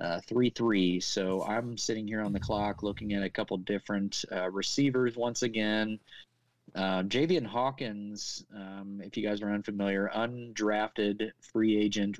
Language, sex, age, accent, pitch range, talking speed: English, male, 30-49, American, 100-125 Hz, 150 wpm